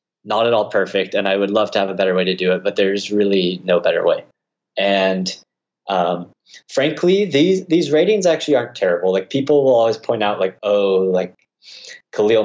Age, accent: 20-39, American